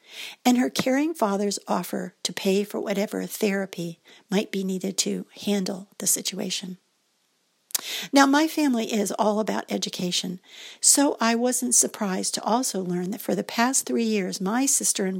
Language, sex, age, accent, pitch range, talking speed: English, female, 50-69, American, 195-235 Hz, 160 wpm